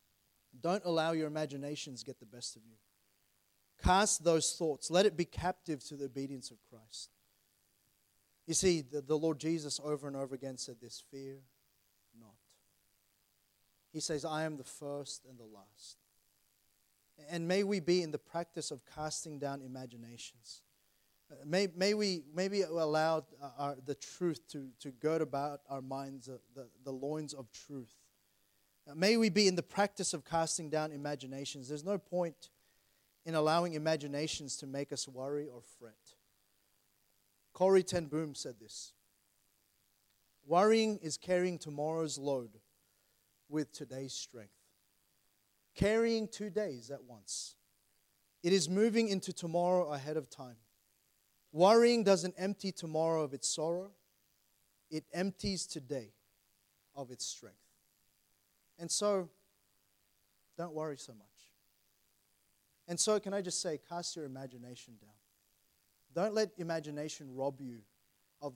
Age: 30-49